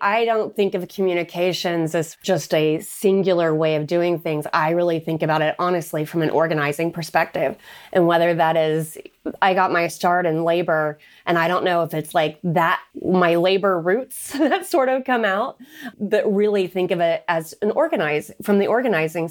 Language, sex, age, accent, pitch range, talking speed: English, female, 30-49, American, 165-210 Hz, 185 wpm